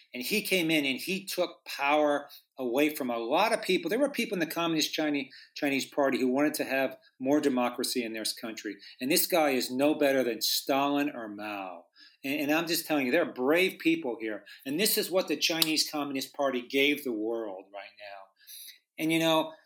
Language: English